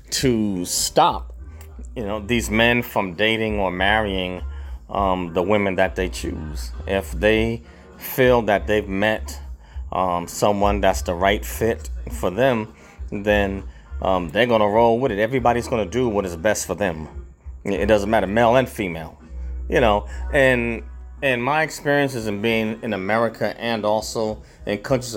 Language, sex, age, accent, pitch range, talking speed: English, male, 30-49, American, 90-120 Hz, 155 wpm